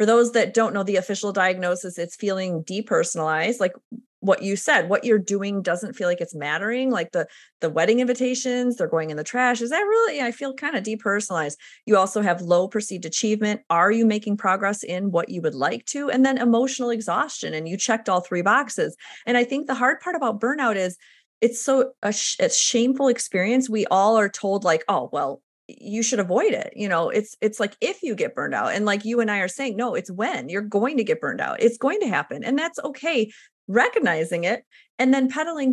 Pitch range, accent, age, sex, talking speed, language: 190-250 Hz, American, 30-49, female, 220 wpm, English